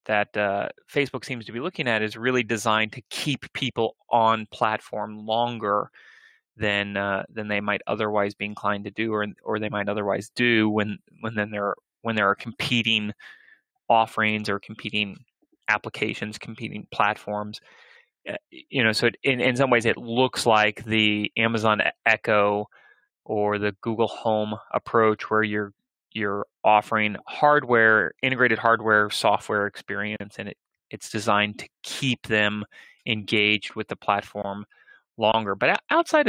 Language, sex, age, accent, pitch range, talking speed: English, male, 20-39, American, 105-120 Hz, 150 wpm